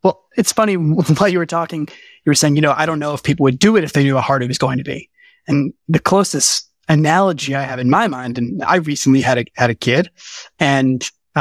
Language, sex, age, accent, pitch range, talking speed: English, male, 20-39, American, 125-170 Hz, 250 wpm